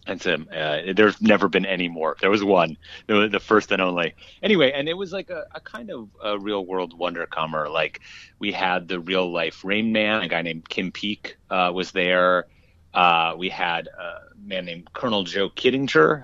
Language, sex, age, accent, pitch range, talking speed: English, male, 30-49, American, 90-110 Hz, 190 wpm